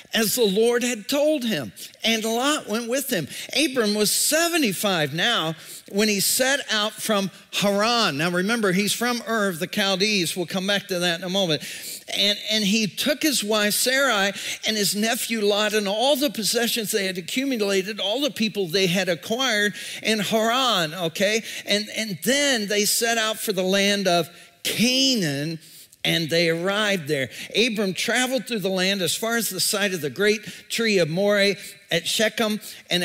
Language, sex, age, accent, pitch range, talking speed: English, male, 50-69, American, 170-225 Hz, 180 wpm